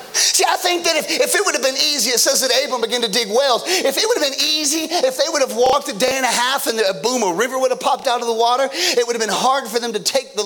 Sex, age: male, 40-59